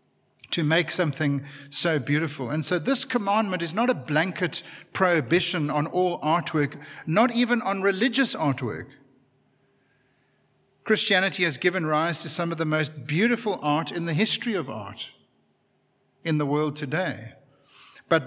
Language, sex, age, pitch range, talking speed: English, male, 50-69, 135-190 Hz, 140 wpm